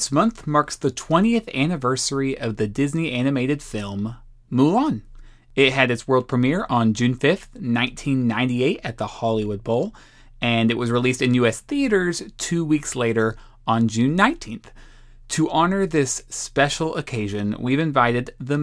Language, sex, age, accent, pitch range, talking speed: English, male, 30-49, American, 120-155 Hz, 150 wpm